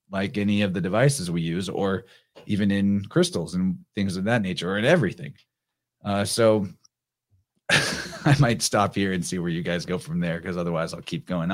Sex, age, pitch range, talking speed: male, 30-49, 100-135 Hz, 200 wpm